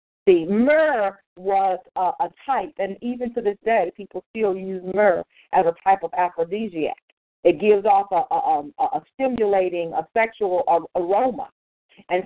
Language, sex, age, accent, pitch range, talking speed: English, female, 50-69, American, 195-290 Hz, 155 wpm